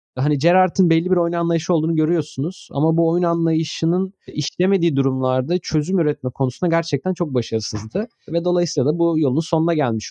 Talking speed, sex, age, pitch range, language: 160 wpm, male, 30-49, 135-170 Hz, Turkish